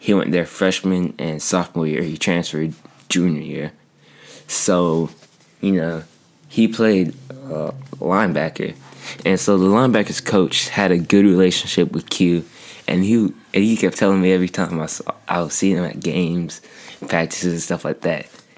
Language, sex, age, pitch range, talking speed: English, male, 20-39, 85-95 Hz, 165 wpm